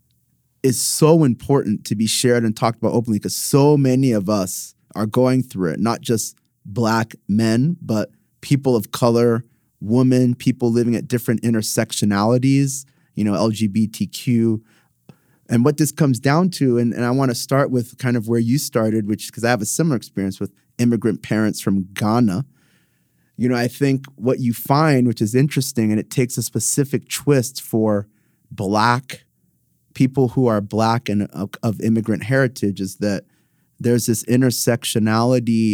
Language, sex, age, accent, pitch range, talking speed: English, male, 30-49, American, 110-130 Hz, 165 wpm